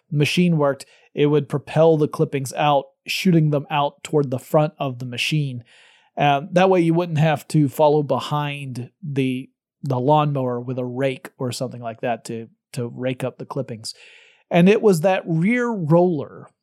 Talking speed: 175 wpm